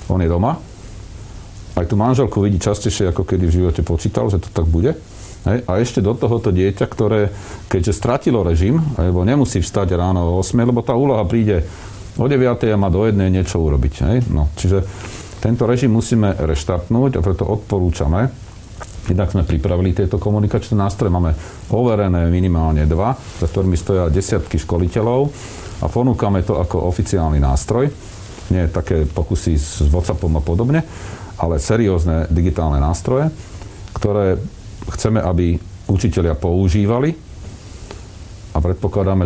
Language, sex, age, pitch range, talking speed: Slovak, male, 40-59, 85-105 Hz, 145 wpm